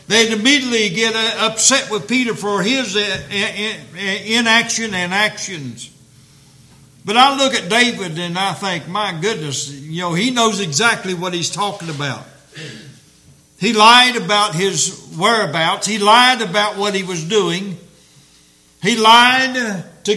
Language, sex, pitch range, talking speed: English, male, 145-225 Hz, 135 wpm